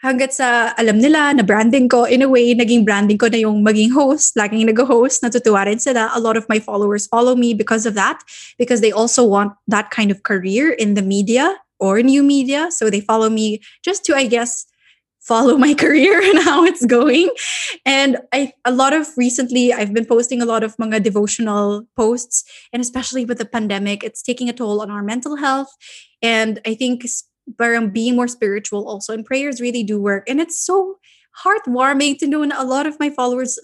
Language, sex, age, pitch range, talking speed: English, female, 20-39, 220-275 Hz, 200 wpm